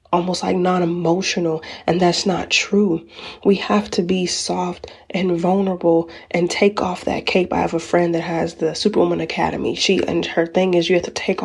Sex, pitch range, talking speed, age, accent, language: female, 175-200 Hz, 195 wpm, 30-49, American, English